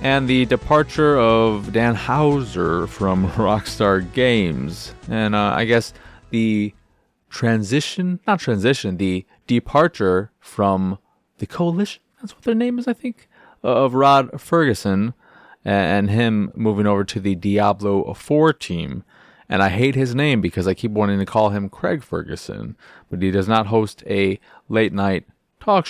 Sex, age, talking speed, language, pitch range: male, 20-39, 150 wpm, English, 100-145 Hz